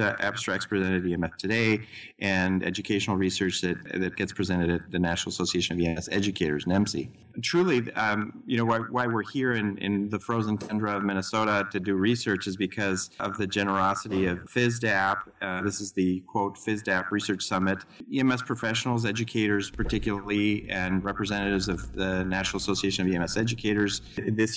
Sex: male